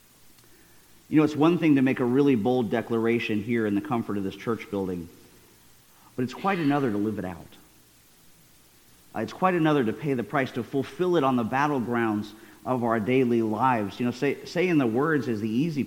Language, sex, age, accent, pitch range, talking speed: English, male, 50-69, American, 110-145 Hz, 205 wpm